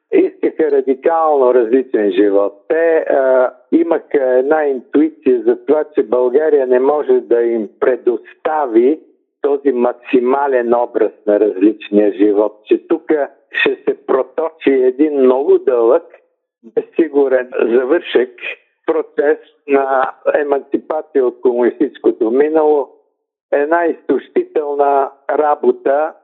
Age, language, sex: 60-79, Bulgarian, male